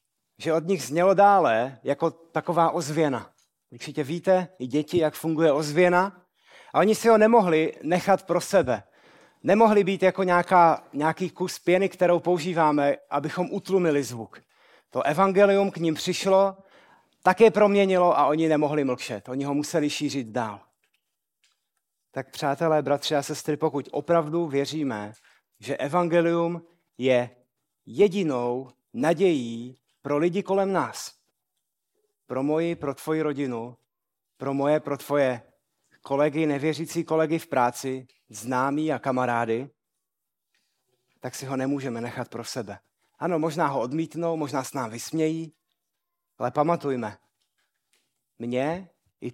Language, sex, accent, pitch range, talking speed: Czech, male, native, 130-175 Hz, 130 wpm